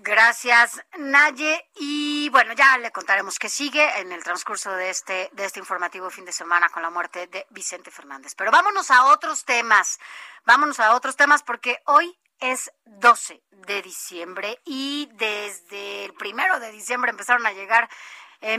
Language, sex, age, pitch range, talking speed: Spanish, female, 30-49, 195-240 Hz, 165 wpm